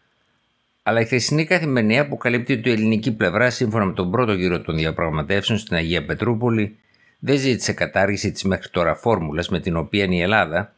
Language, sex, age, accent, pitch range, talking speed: Greek, male, 50-69, native, 85-115 Hz, 175 wpm